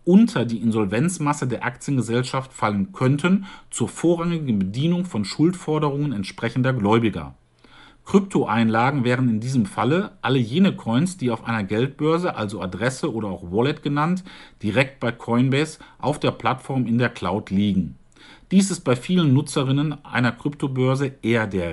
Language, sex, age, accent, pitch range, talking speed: English, male, 50-69, German, 110-145 Hz, 140 wpm